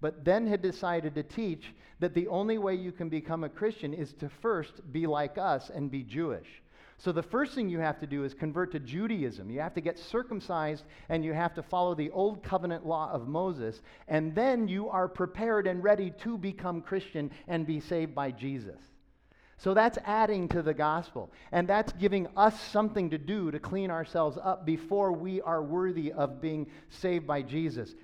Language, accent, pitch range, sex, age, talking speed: English, American, 145-185 Hz, male, 50-69, 200 wpm